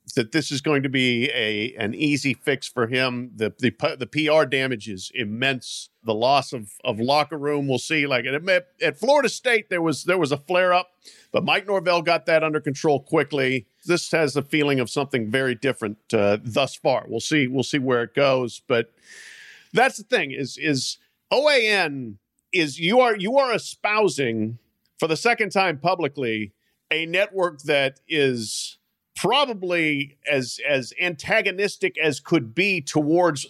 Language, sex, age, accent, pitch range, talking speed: English, male, 50-69, American, 130-180 Hz, 170 wpm